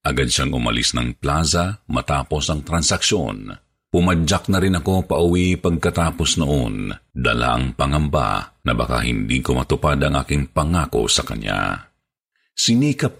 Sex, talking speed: male, 130 wpm